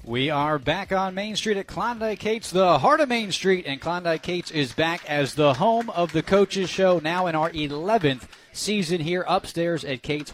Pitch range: 135-175 Hz